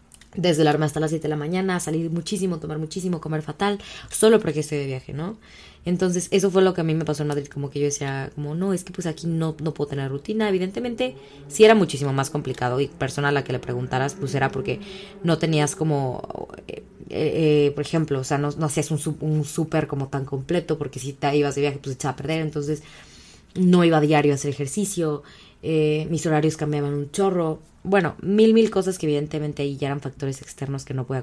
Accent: Mexican